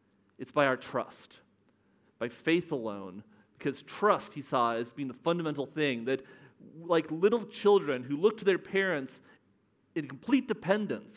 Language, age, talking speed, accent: English, 40-59, 150 wpm, American